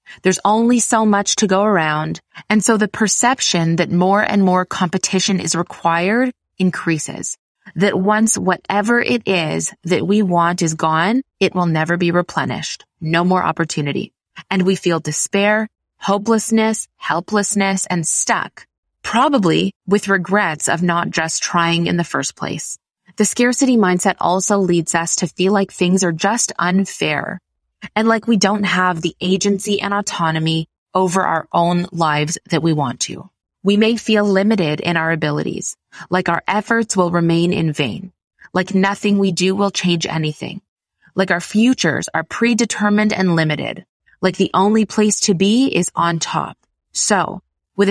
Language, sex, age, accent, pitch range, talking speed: English, female, 20-39, American, 170-210 Hz, 155 wpm